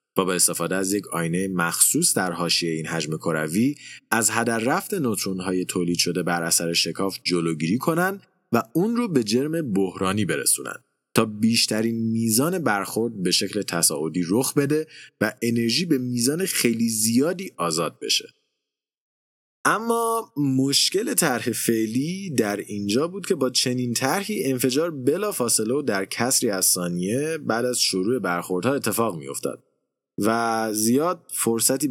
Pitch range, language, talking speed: 95-140 Hz, Persian, 135 wpm